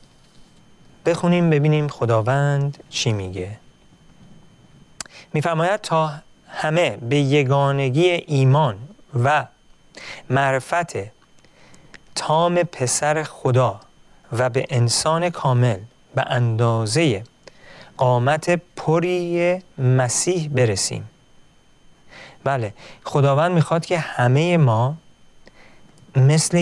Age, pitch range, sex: 40-59, 120-165 Hz, male